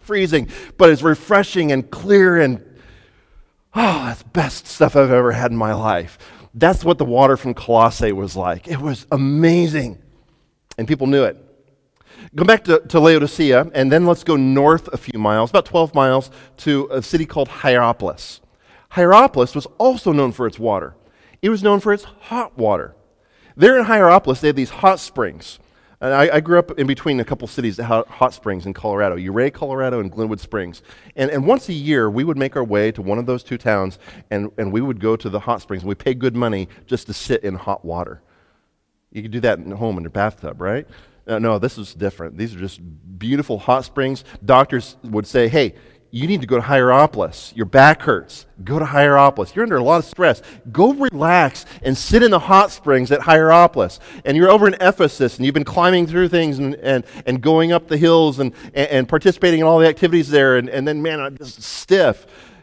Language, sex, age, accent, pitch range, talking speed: English, male, 40-59, American, 115-160 Hz, 205 wpm